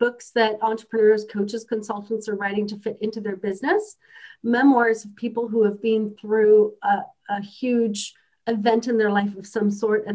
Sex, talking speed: female, 175 wpm